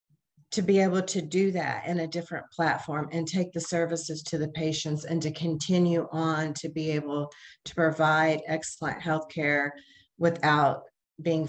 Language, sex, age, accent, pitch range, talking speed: English, female, 40-59, American, 155-175 Hz, 155 wpm